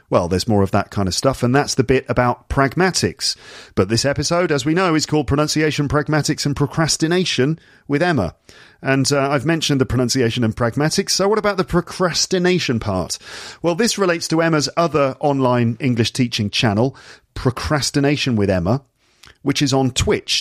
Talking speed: 175 wpm